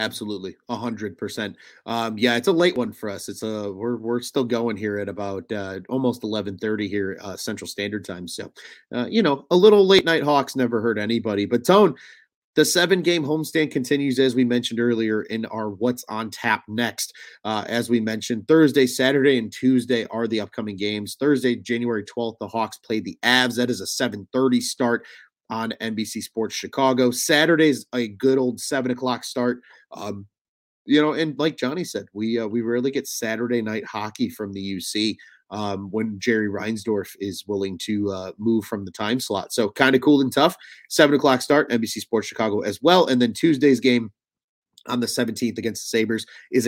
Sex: male